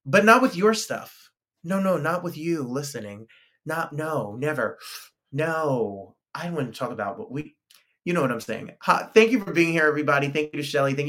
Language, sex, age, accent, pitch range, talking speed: English, male, 30-49, American, 130-170 Hz, 200 wpm